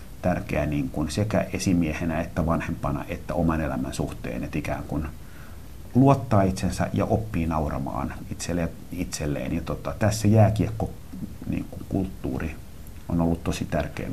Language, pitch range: Finnish, 85-105 Hz